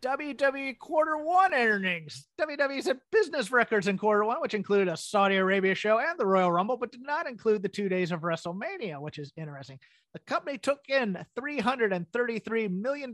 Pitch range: 185-245 Hz